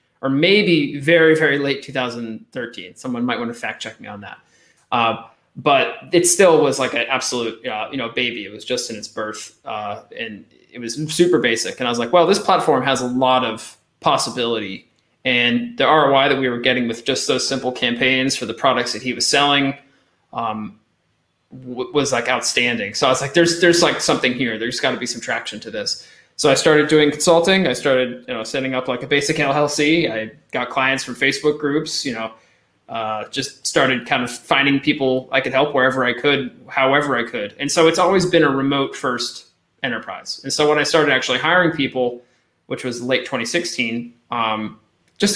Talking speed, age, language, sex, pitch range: 205 wpm, 20-39, English, male, 125-155 Hz